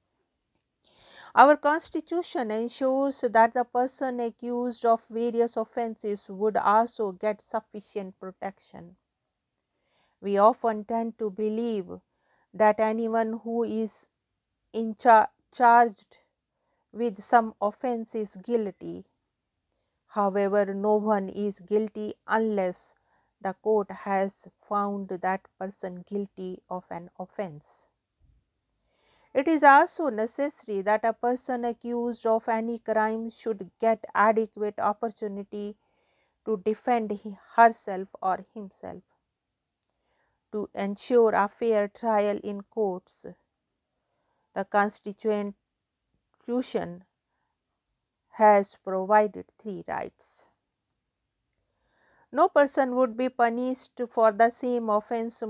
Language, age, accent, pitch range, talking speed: English, 50-69, Indian, 205-235 Hz, 95 wpm